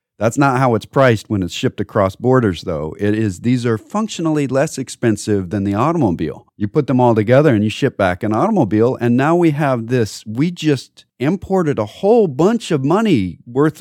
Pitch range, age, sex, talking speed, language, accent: 110-155 Hz, 40-59, male, 200 wpm, English, American